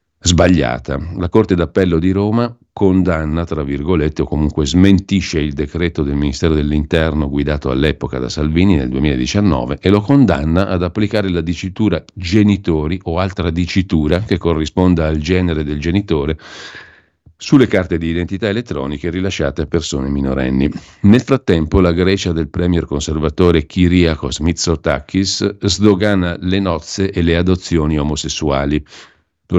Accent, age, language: native, 50-69, Italian